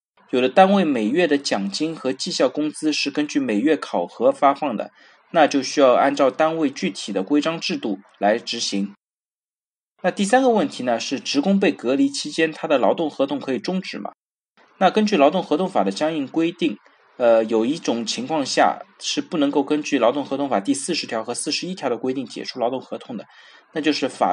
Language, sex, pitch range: Chinese, male, 130-205 Hz